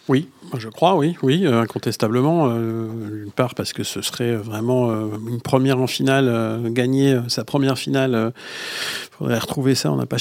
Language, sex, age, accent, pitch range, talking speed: French, male, 50-69, French, 115-145 Hz, 195 wpm